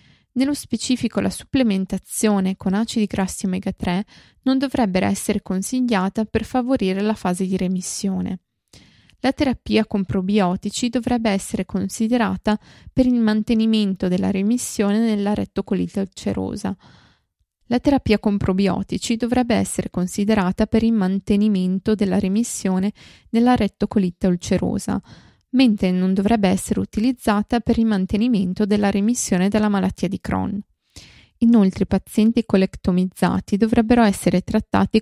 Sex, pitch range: female, 190-225 Hz